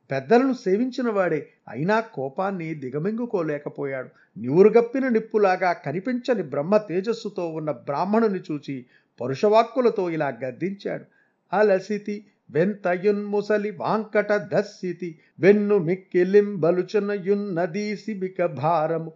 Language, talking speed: Telugu, 65 wpm